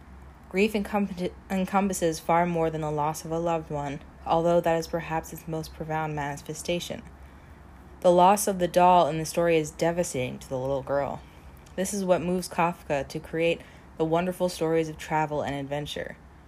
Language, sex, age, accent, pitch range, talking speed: English, female, 20-39, American, 145-170 Hz, 170 wpm